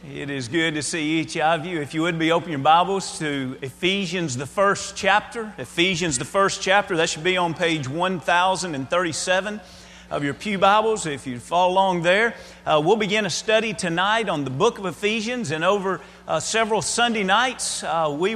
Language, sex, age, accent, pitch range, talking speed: English, male, 40-59, American, 155-200 Hz, 190 wpm